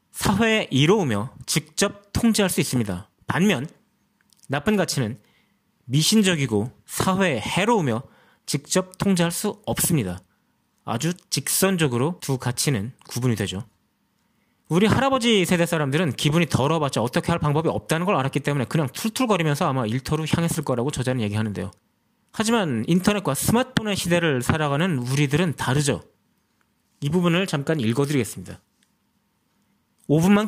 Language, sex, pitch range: Korean, male, 130-185 Hz